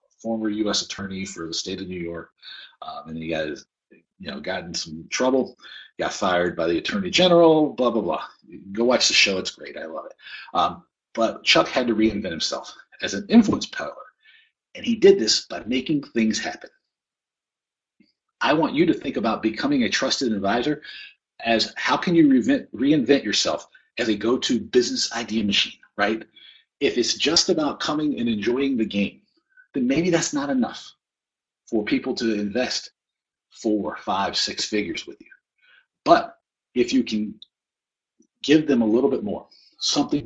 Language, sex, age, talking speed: English, male, 40-59, 170 wpm